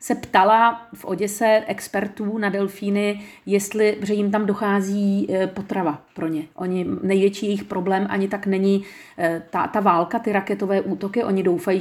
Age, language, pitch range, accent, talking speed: 40-59, Czech, 195-220 Hz, native, 145 wpm